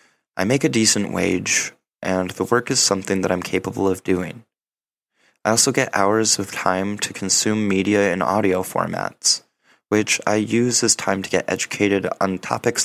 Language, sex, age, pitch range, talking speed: English, male, 20-39, 95-115 Hz, 175 wpm